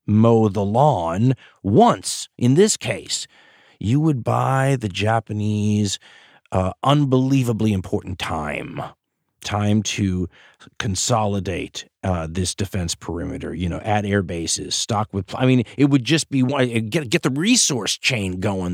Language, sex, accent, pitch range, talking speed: English, male, American, 95-125 Hz, 135 wpm